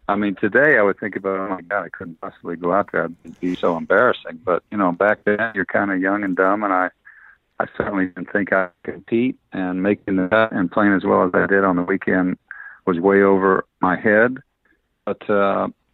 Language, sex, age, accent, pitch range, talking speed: English, male, 50-69, American, 90-100 Hz, 225 wpm